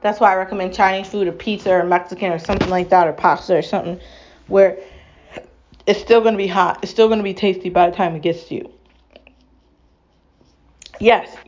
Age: 20-39